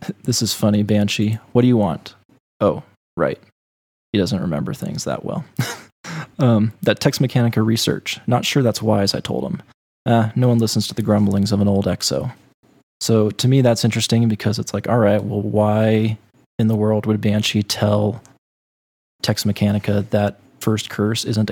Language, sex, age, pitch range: English, male, 20-39, 105-120 Hz